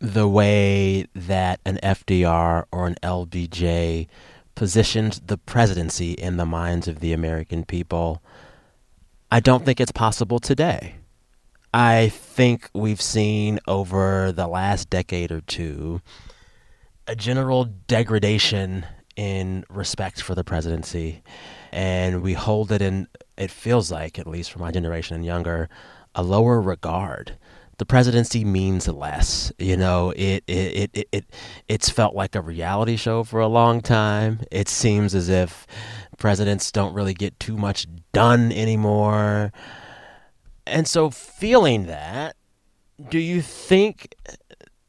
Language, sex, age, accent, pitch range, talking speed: English, male, 30-49, American, 90-115 Hz, 135 wpm